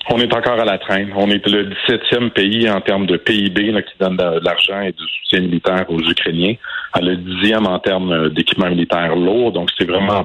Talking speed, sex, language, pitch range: 215 wpm, male, French, 90-120 Hz